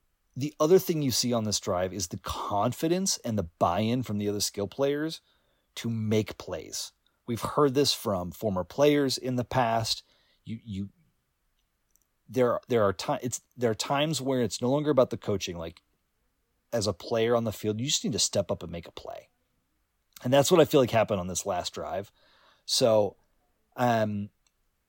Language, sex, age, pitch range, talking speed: English, male, 30-49, 105-135 Hz, 190 wpm